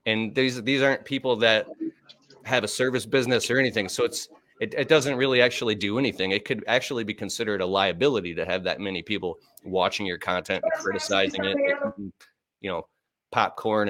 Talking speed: 185 wpm